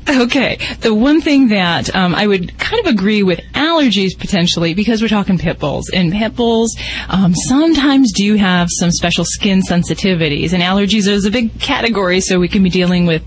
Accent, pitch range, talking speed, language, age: American, 175-205 Hz, 190 wpm, English, 30-49